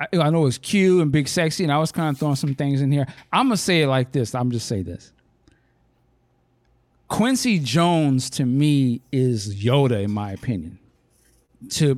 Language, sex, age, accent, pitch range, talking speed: English, male, 50-69, American, 135-180 Hz, 185 wpm